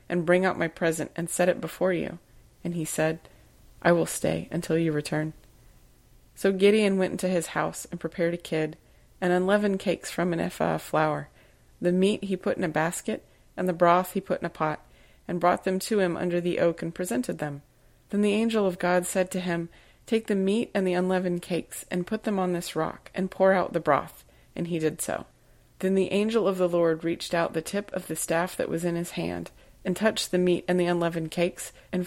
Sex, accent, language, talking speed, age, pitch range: female, American, English, 225 wpm, 30-49, 160-185 Hz